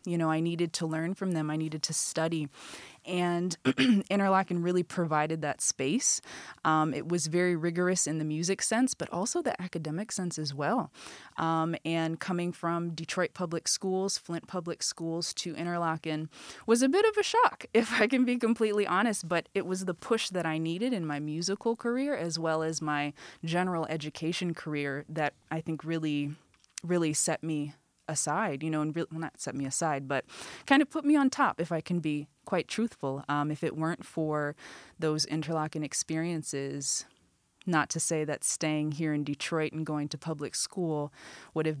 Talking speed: 185 wpm